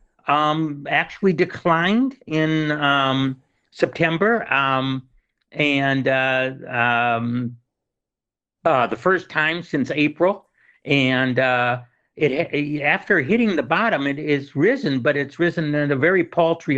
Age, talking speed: 60-79, 120 wpm